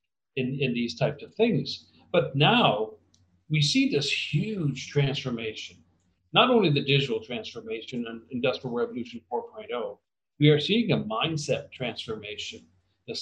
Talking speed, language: 130 wpm, English